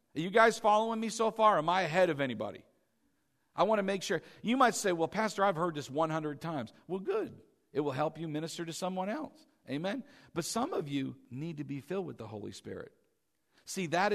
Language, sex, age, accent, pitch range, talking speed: English, male, 50-69, American, 150-205 Hz, 225 wpm